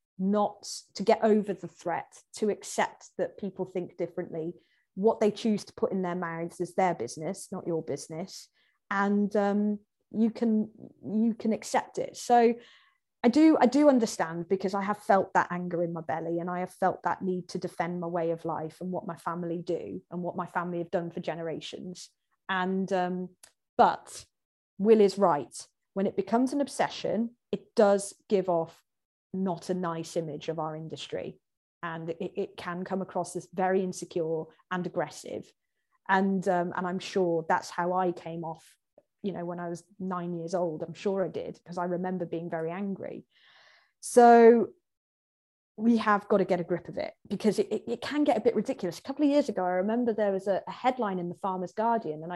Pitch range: 175-210 Hz